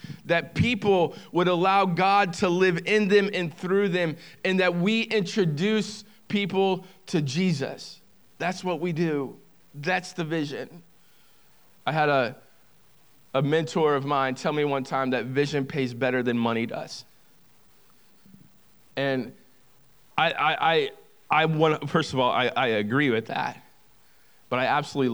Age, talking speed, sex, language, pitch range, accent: 20-39, 145 wpm, male, English, 145-190 Hz, American